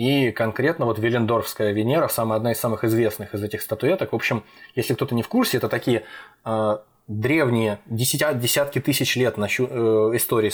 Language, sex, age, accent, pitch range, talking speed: Russian, male, 20-39, native, 110-130 Hz, 155 wpm